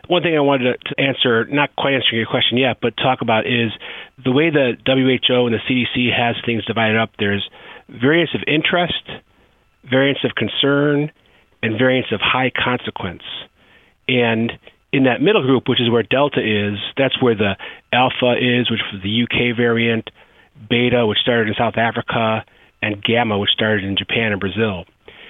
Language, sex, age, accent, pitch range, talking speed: English, male, 40-59, American, 110-135 Hz, 175 wpm